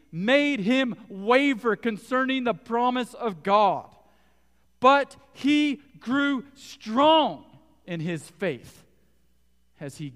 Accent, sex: American, male